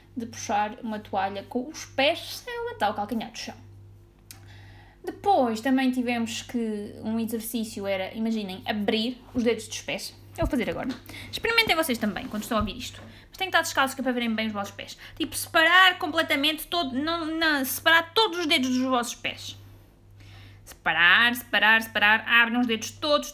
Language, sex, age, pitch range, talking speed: Portuguese, female, 20-39, 215-300 Hz, 175 wpm